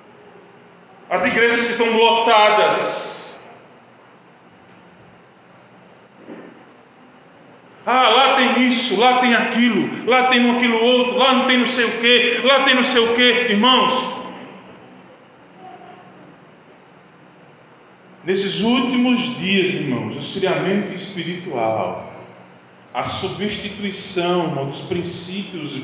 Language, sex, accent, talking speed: Portuguese, male, Brazilian, 100 wpm